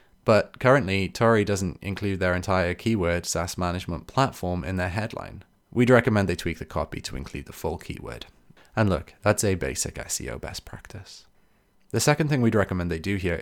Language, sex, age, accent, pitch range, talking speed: English, male, 20-39, British, 85-110 Hz, 185 wpm